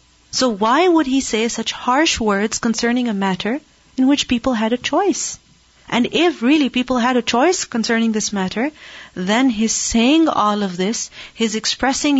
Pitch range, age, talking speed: 200-255 Hz, 30-49, 170 wpm